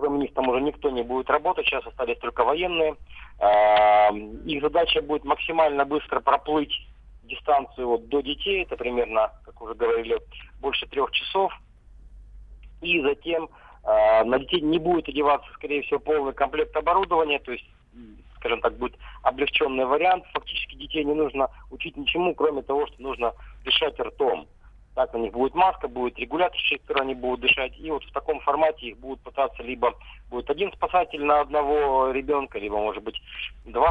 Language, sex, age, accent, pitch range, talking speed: Russian, male, 40-59, native, 125-155 Hz, 165 wpm